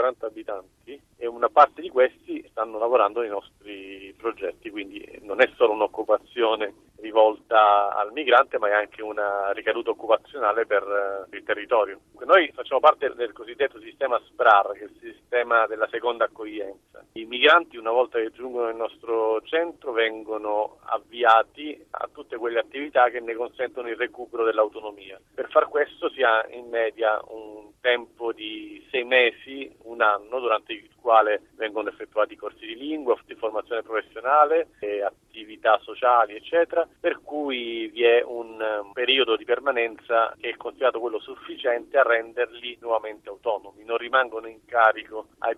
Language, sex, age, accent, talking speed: Italian, male, 40-59, native, 150 wpm